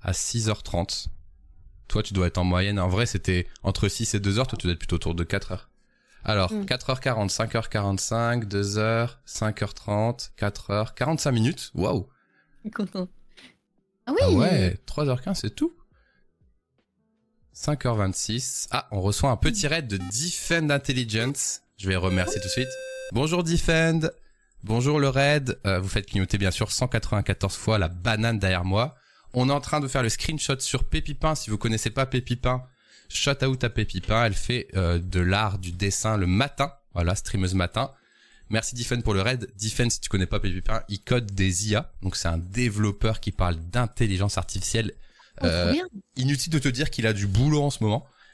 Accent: French